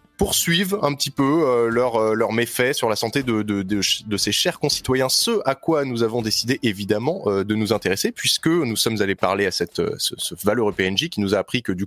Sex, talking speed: male, 250 wpm